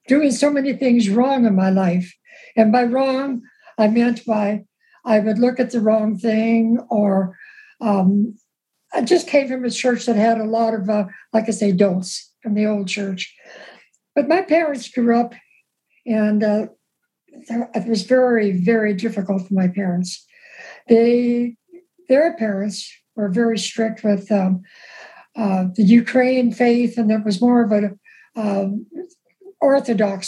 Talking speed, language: 155 wpm, English